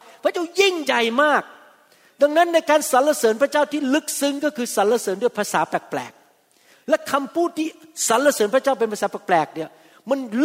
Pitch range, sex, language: 185-230 Hz, male, Thai